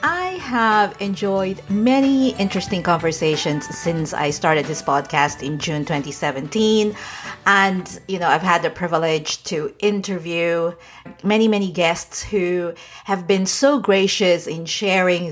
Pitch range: 170-225 Hz